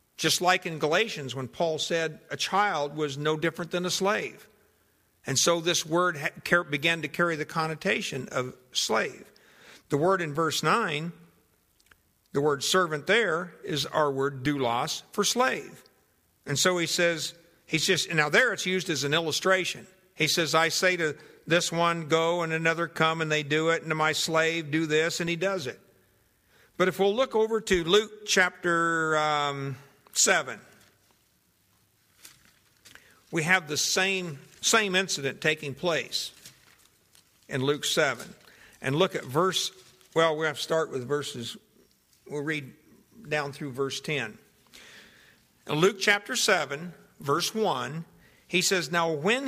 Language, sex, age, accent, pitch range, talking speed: English, male, 50-69, American, 145-185 Hz, 155 wpm